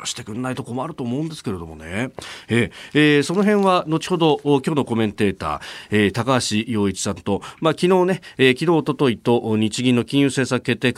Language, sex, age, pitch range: Japanese, male, 40-59, 105-155 Hz